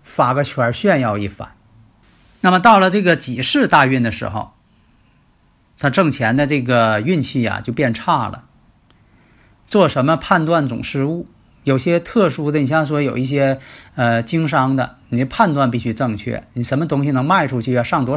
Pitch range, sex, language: 120-160 Hz, male, Chinese